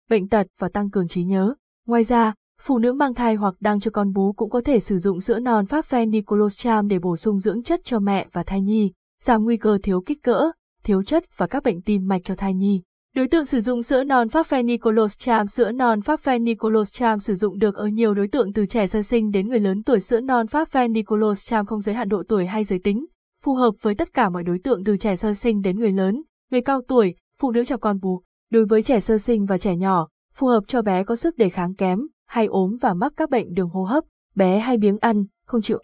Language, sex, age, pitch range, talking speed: Vietnamese, female, 20-39, 195-235 Hz, 245 wpm